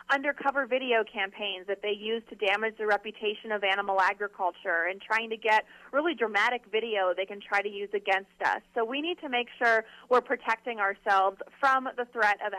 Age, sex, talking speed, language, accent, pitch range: 30-49, female, 190 wpm, English, American, 210-260 Hz